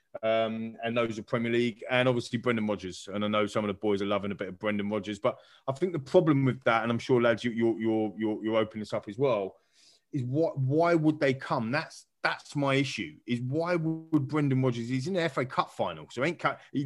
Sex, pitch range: male, 105-130 Hz